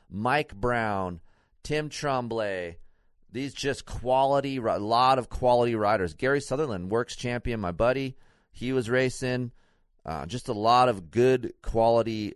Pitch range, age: 110-145 Hz, 30-49